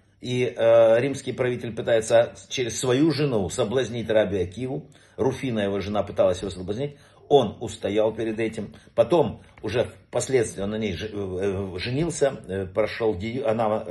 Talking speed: 125 wpm